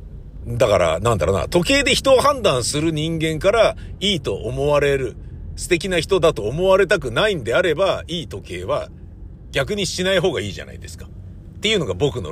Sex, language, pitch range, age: male, Japanese, 80-130 Hz, 50-69